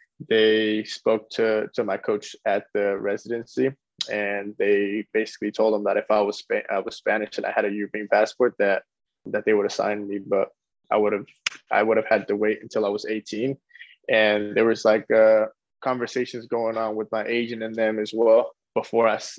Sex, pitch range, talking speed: male, 105-120 Hz, 190 wpm